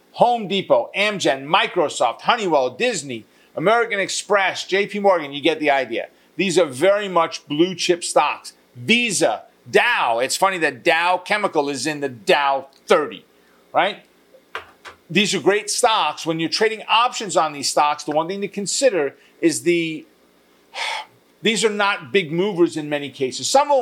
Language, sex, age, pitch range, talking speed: English, male, 50-69, 140-200 Hz, 160 wpm